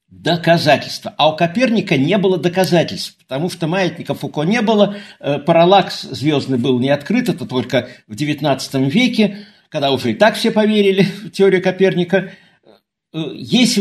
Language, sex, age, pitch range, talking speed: Russian, male, 50-69, 150-195 Hz, 150 wpm